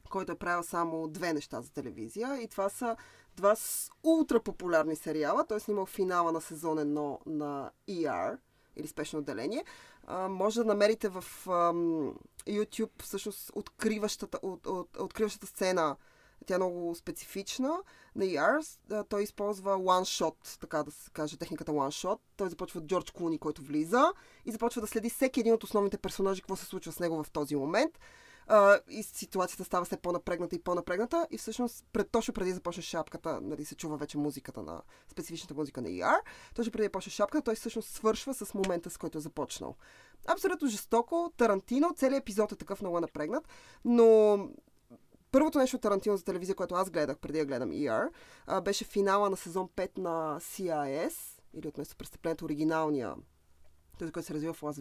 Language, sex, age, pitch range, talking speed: Bulgarian, female, 20-39, 160-220 Hz, 170 wpm